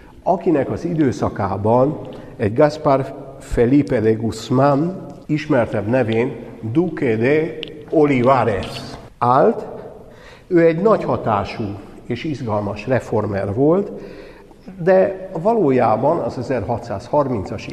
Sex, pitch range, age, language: male, 110-135 Hz, 60-79, Hungarian